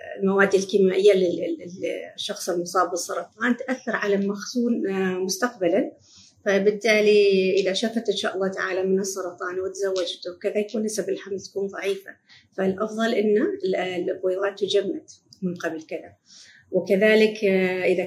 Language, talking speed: Arabic, 115 wpm